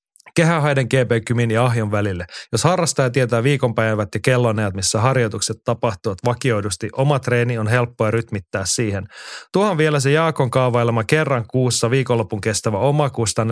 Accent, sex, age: native, male, 30-49